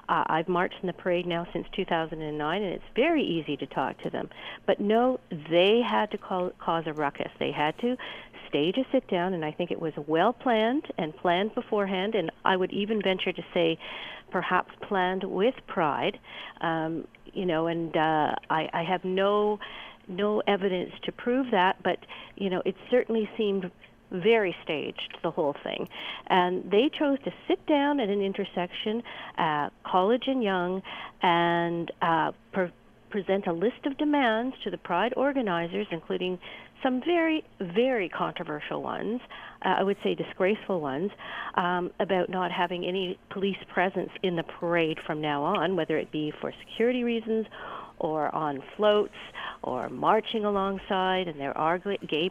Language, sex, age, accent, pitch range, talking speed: English, female, 50-69, American, 175-225 Hz, 160 wpm